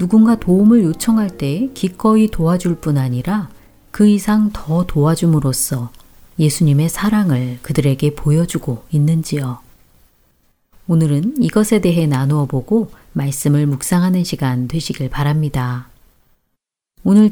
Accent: native